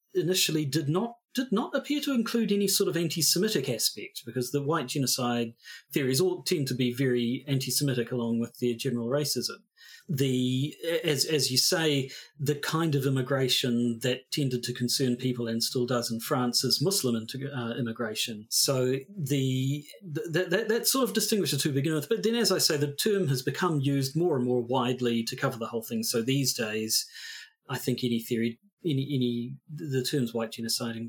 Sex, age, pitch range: male, 40-59, 125-180 Hz